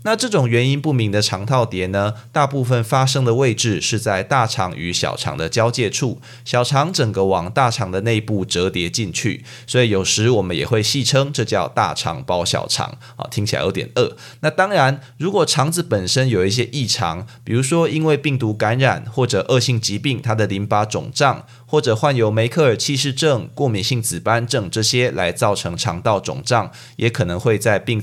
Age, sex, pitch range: 20-39, male, 105-140 Hz